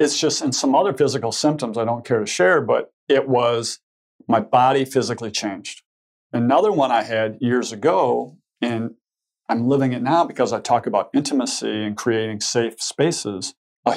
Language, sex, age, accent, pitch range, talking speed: English, male, 50-69, American, 110-135 Hz, 170 wpm